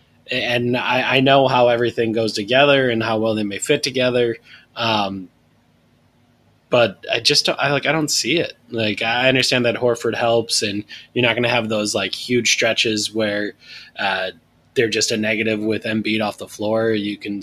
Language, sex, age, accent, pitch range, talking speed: English, male, 20-39, American, 105-125 Hz, 190 wpm